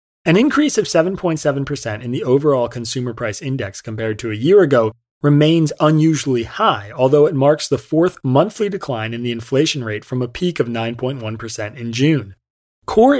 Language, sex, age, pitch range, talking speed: English, male, 30-49, 115-145 Hz, 170 wpm